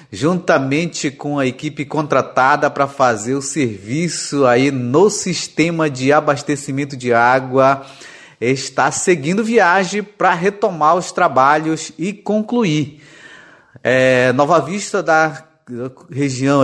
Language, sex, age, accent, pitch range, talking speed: Portuguese, male, 30-49, Brazilian, 130-165 Hz, 110 wpm